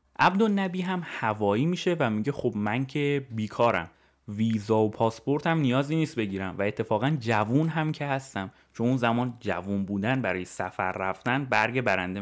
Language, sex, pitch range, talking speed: Persian, male, 105-150 Hz, 160 wpm